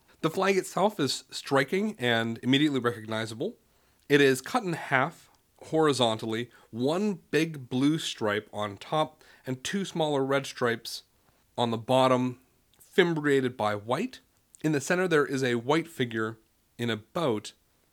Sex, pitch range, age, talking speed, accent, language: male, 110-140 Hz, 30-49, 140 wpm, American, English